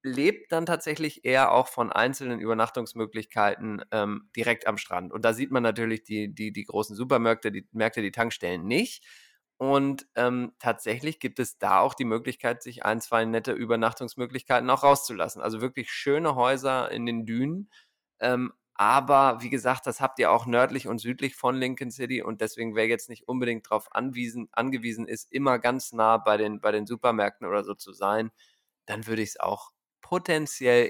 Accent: German